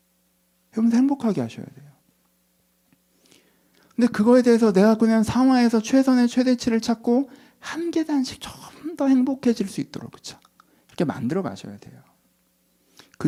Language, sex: Korean, male